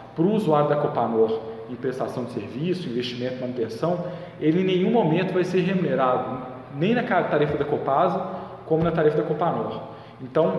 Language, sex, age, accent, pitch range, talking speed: Portuguese, male, 20-39, Brazilian, 130-175 Hz, 165 wpm